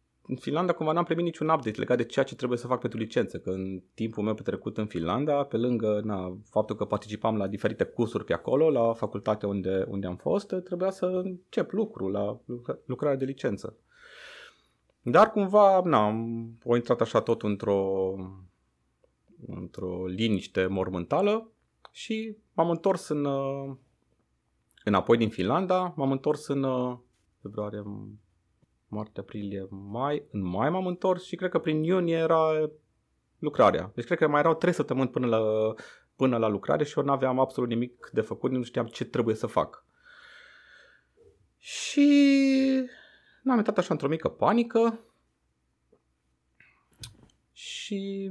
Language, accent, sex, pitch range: Romanian, native, male, 105-165 Hz